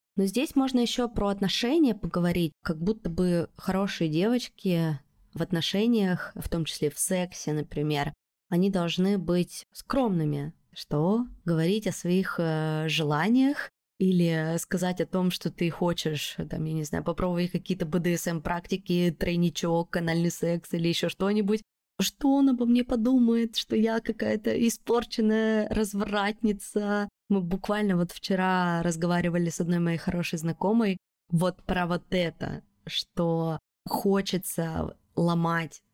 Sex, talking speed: female, 125 wpm